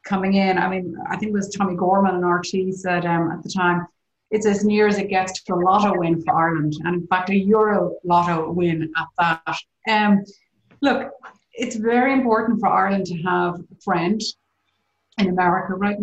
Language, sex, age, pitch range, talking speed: English, female, 30-49, 180-215 Hz, 195 wpm